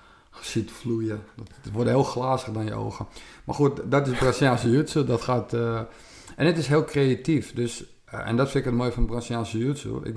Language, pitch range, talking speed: Dutch, 110-125 Hz, 210 wpm